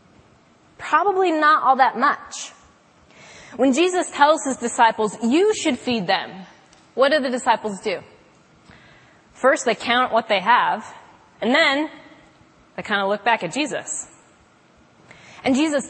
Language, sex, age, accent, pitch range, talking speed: English, female, 20-39, American, 220-290 Hz, 135 wpm